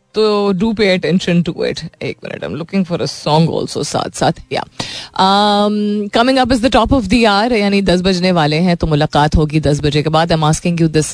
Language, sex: Hindi, female